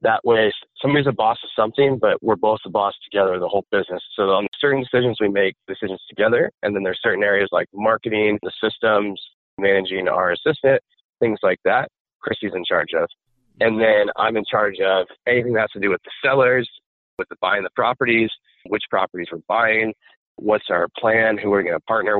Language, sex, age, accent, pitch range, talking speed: English, male, 30-49, American, 100-120 Hz, 200 wpm